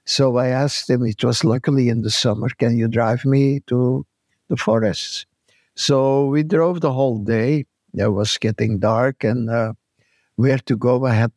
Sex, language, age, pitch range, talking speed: male, English, 60-79, 115-140 Hz, 180 wpm